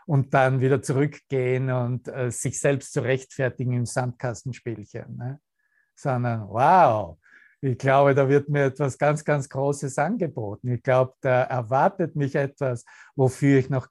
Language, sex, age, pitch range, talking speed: German, male, 60-79, 120-150 Hz, 140 wpm